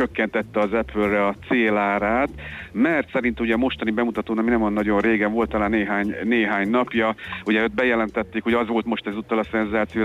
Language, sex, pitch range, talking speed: Hungarian, male, 105-115 Hz, 180 wpm